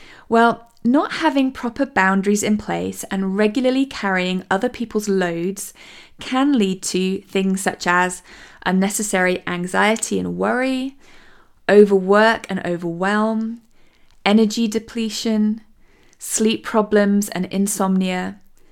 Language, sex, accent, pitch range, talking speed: English, female, British, 180-220 Hz, 105 wpm